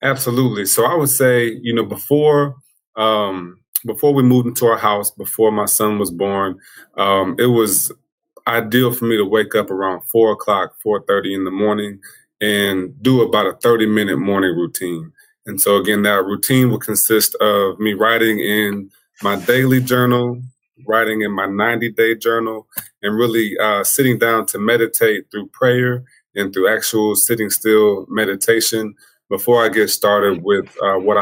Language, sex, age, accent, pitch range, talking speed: English, male, 20-39, American, 100-120 Hz, 165 wpm